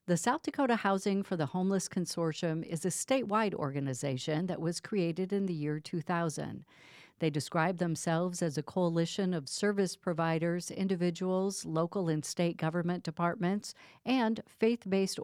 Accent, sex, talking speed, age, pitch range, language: American, female, 140 wpm, 50-69, 160-200 Hz, English